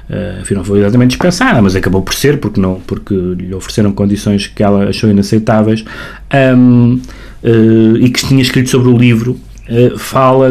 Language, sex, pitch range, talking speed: Portuguese, male, 105-125 Hz, 185 wpm